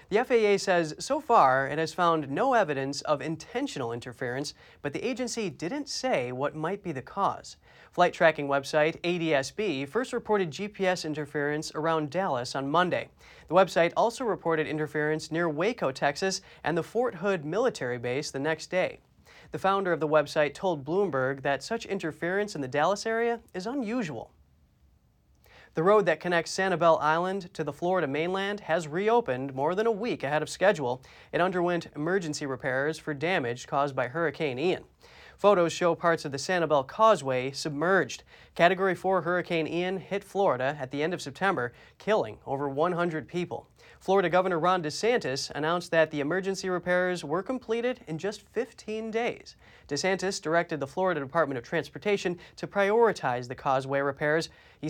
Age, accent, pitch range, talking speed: 30-49, American, 145-195 Hz, 160 wpm